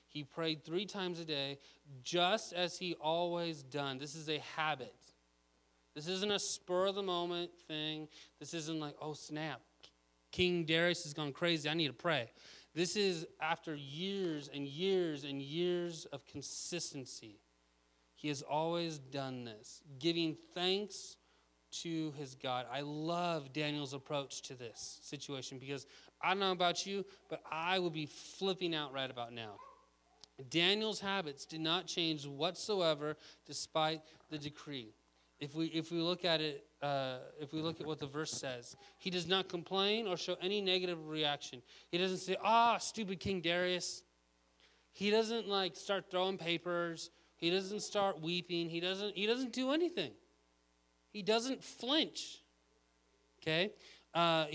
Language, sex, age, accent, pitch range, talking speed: English, male, 30-49, American, 140-180 Hz, 155 wpm